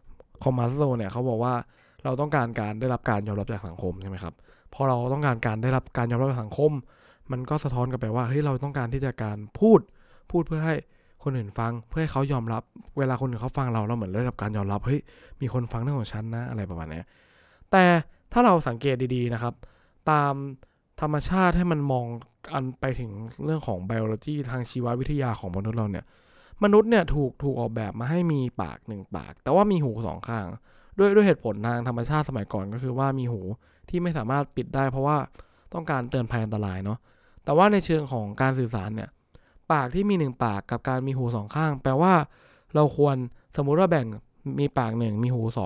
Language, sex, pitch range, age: English, male, 110-145 Hz, 20-39